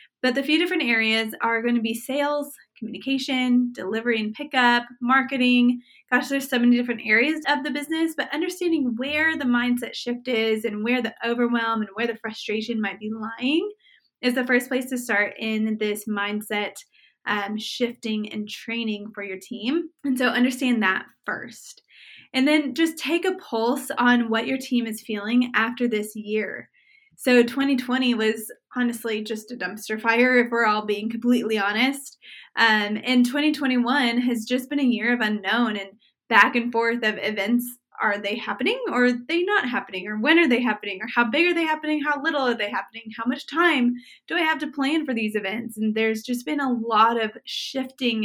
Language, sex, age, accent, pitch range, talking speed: English, female, 20-39, American, 220-265 Hz, 185 wpm